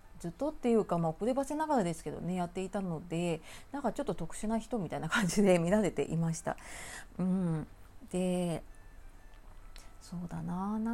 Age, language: 30-49, Japanese